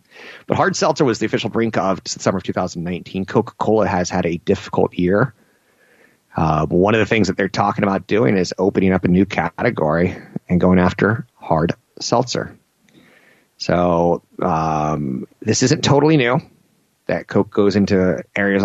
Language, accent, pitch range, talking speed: English, American, 90-110 Hz, 160 wpm